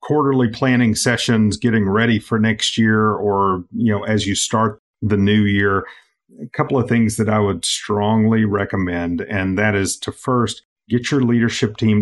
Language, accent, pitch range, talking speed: English, American, 105-125 Hz, 175 wpm